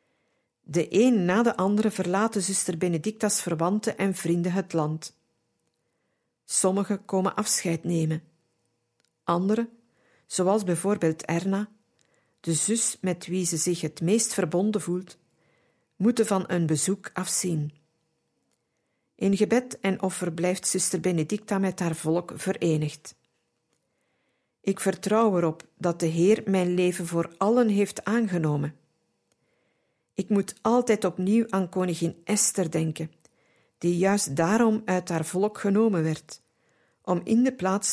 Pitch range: 165-205 Hz